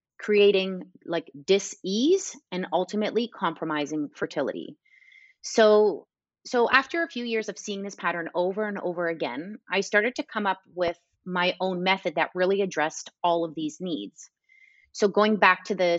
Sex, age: female, 30-49